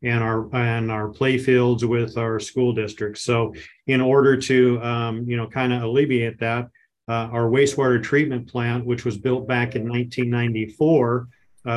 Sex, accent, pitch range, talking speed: male, American, 115-125 Hz, 165 wpm